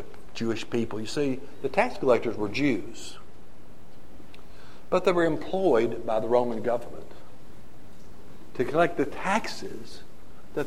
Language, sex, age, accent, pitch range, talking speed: English, male, 60-79, American, 125-195 Hz, 125 wpm